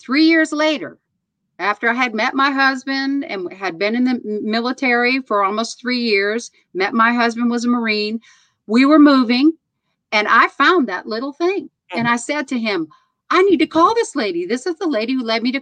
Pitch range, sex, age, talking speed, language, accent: 235-370 Hz, female, 50-69, 205 wpm, English, American